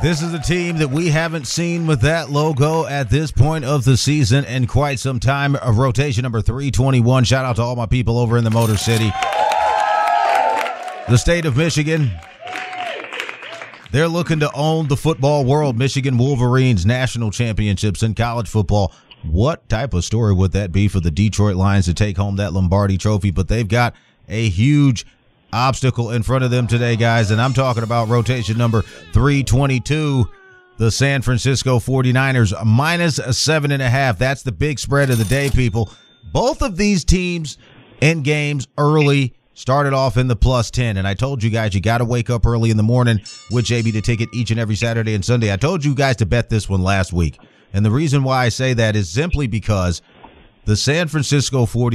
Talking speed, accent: 195 wpm, American